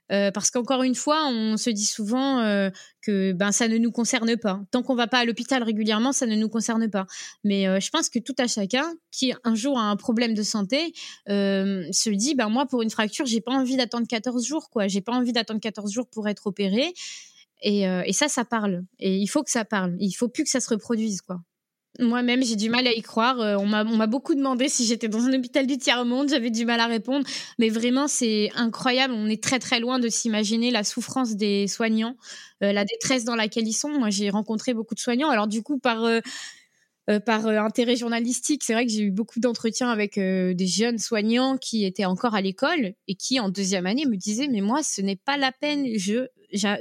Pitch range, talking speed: 210-255 Hz, 240 wpm